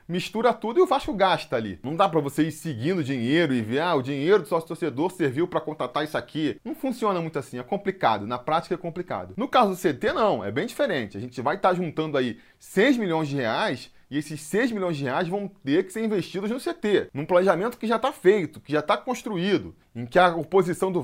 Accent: Brazilian